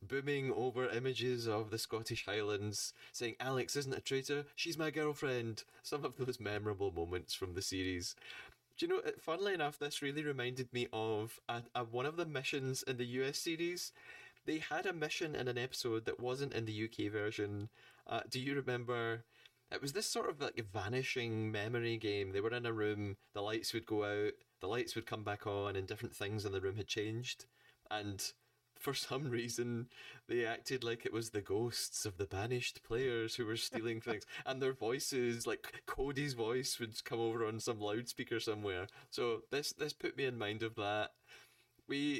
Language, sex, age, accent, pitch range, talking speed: English, male, 20-39, British, 105-135 Hz, 190 wpm